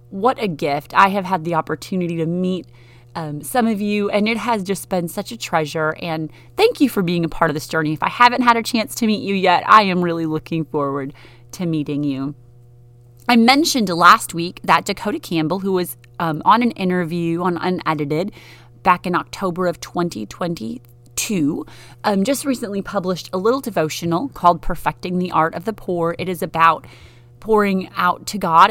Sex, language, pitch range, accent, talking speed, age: female, English, 150-190 Hz, American, 190 wpm, 30-49